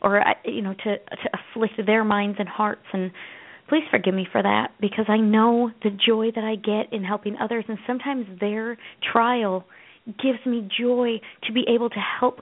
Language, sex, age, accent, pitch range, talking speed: English, female, 30-49, American, 205-240 Hz, 190 wpm